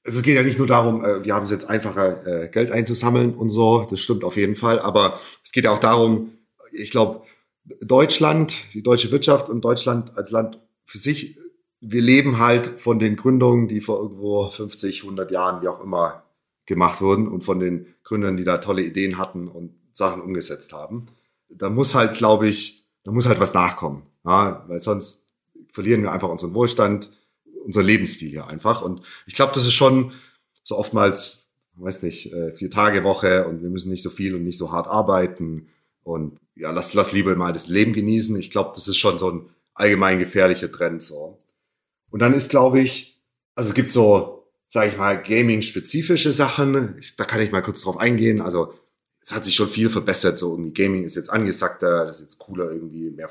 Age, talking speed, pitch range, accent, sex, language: 40-59, 195 wpm, 90-120 Hz, German, male, German